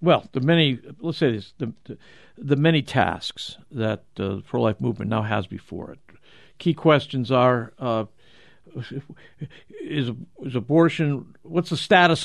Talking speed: 140 wpm